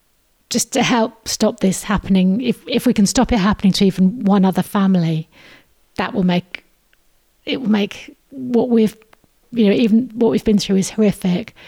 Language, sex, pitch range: English, female, 185-210 Hz